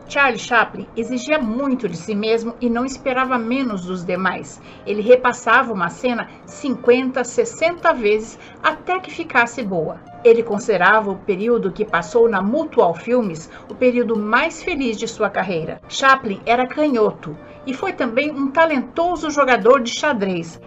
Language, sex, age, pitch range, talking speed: Portuguese, female, 60-79, 210-260 Hz, 150 wpm